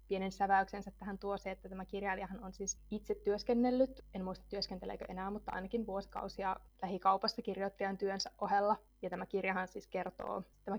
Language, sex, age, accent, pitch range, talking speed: Finnish, female, 20-39, native, 195-225 Hz, 160 wpm